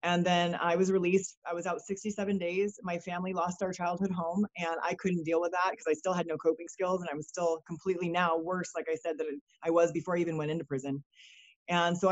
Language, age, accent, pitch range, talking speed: English, 30-49, American, 170-200 Hz, 250 wpm